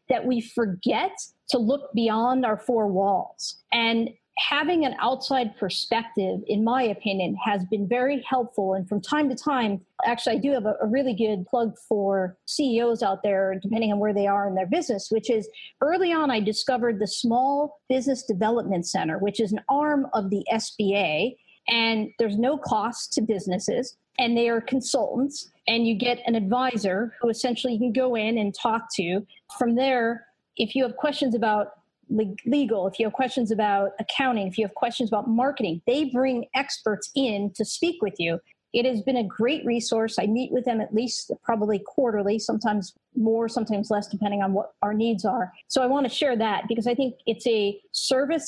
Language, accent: English, American